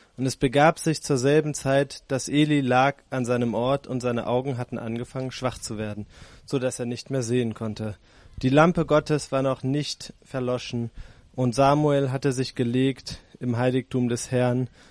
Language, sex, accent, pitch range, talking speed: German, male, German, 120-150 Hz, 175 wpm